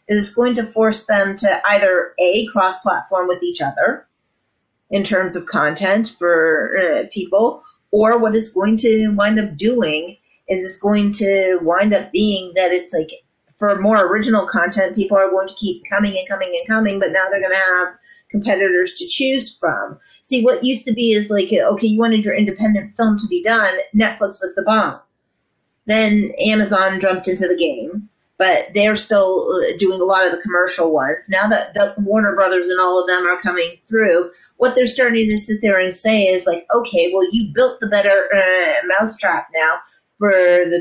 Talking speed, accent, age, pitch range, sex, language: 195 wpm, American, 30-49, 180-220 Hz, female, English